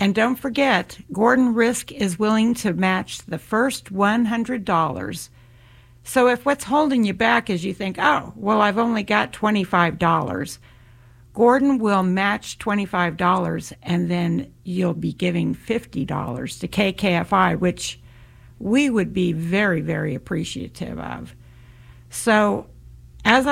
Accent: American